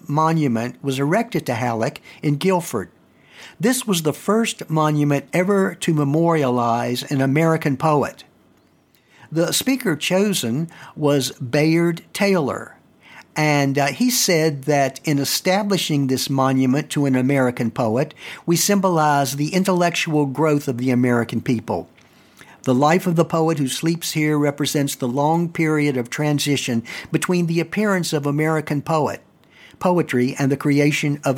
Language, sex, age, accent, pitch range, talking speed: English, male, 60-79, American, 130-165 Hz, 135 wpm